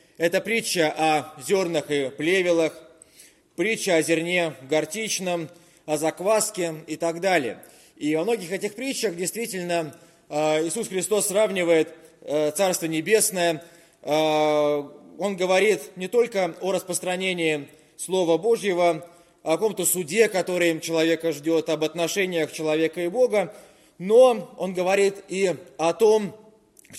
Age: 20-39